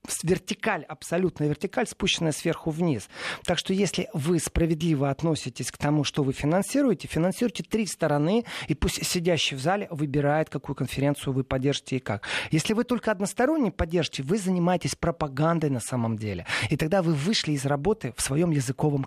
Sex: male